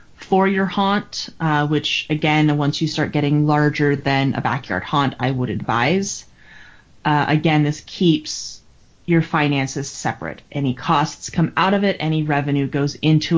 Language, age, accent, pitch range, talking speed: English, 30-49, American, 140-165 Hz, 155 wpm